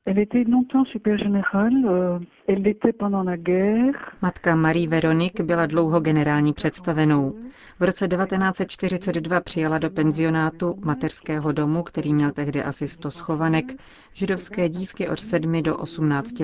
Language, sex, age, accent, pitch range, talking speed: Czech, female, 30-49, native, 150-185 Hz, 100 wpm